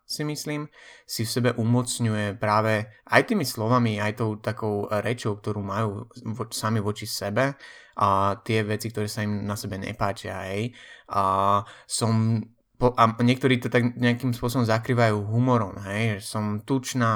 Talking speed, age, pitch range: 155 wpm, 20-39, 100-120 Hz